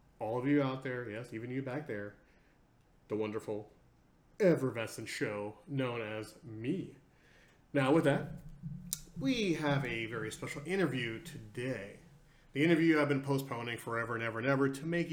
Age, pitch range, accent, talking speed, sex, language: 30-49, 110-150 Hz, American, 150 wpm, male, English